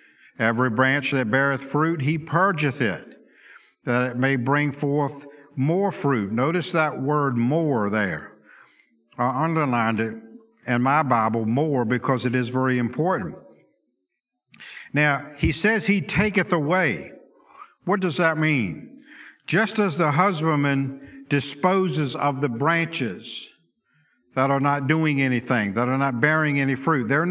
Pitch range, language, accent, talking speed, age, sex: 140-180 Hz, English, American, 135 wpm, 50-69, male